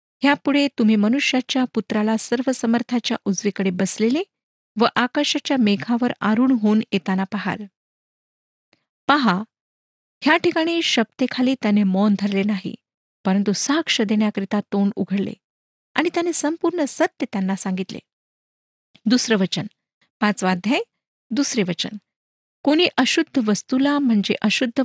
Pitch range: 200-265 Hz